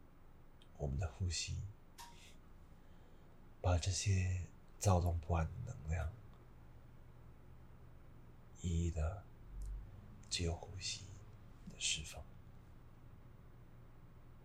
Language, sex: Chinese, male